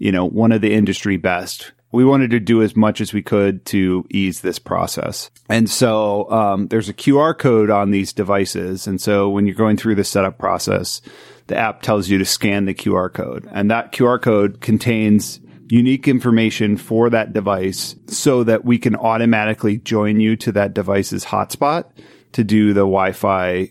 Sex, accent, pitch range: male, American, 95-115 Hz